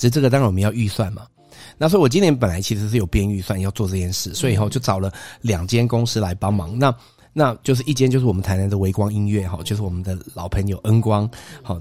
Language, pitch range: Chinese, 100-125 Hz